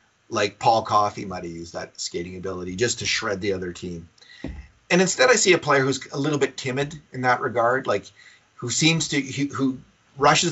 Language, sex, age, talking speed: English, male, 40-59, 200 wpm